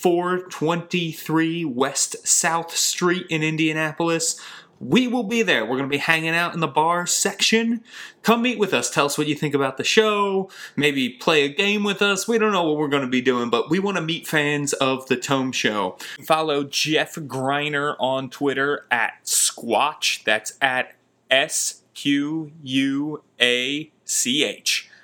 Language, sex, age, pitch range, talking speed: English, male, 30-49, 140-175 Hz, 160 wpm